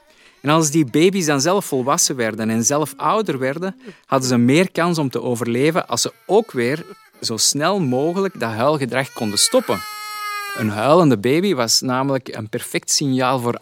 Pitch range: 115-170 Hz